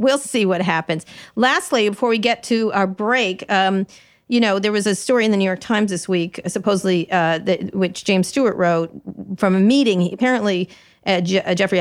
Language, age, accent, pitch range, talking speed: English, 40-59, American, 165-195 Hz, 195 wpm